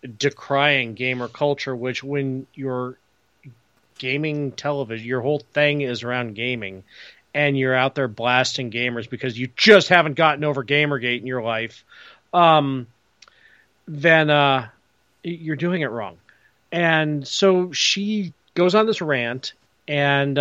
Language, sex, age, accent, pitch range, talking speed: English, male, 40-59, American, 120-155 Hz, 130 wpm